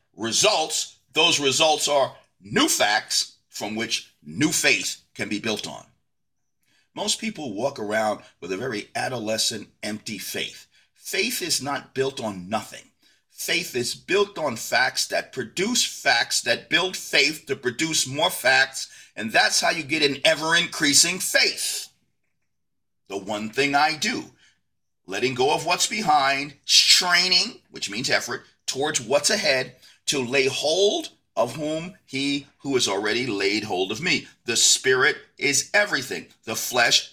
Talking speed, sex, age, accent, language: 145 wpm, male, 50-69, American, English